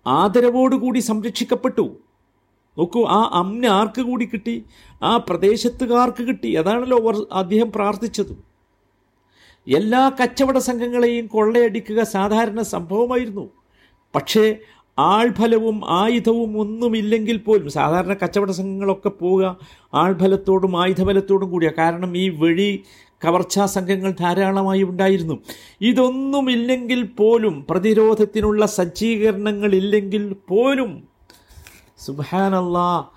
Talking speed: 85 wpm